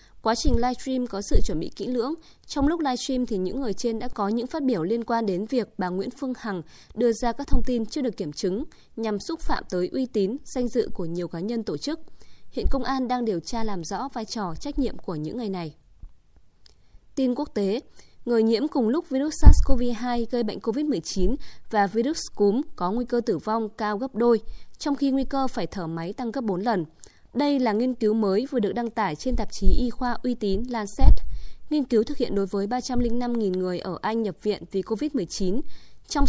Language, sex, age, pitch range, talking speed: Vietnamese, female, 20-39, 195-255 Hz, 225 wpm